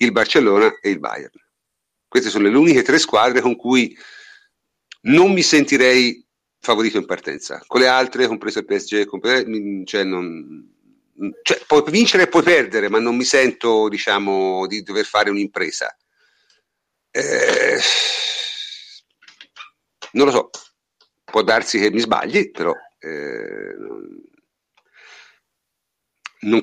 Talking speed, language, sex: 125 wpm, Italian, male